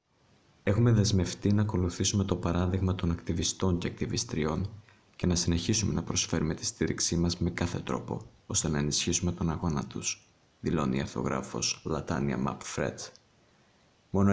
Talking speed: 140 wpm